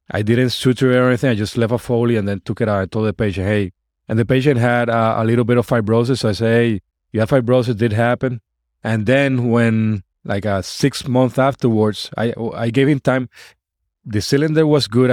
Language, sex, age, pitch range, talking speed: English, male, 30-49, 100-120 Hz, 230 wpm